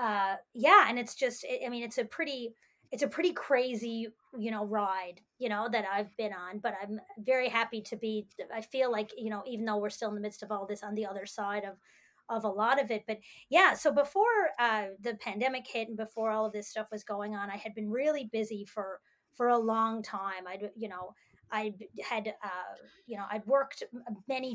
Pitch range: 205-235 Hz